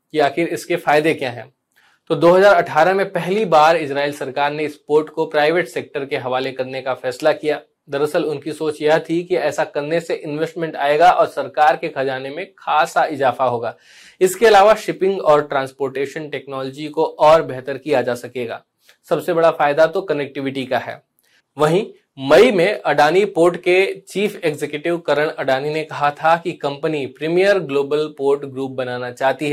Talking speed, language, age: 170 wpm, Hindi, 20-39